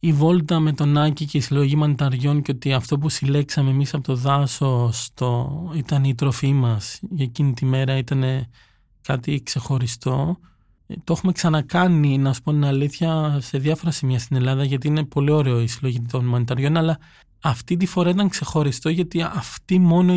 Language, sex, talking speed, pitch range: Greek, male, 175 wpm, 135-165 Hz